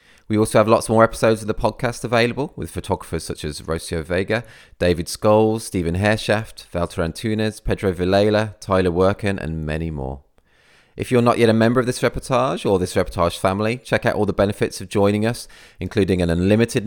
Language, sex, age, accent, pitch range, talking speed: English, male, 30-49, British, 85-110 Hz, 190 wpm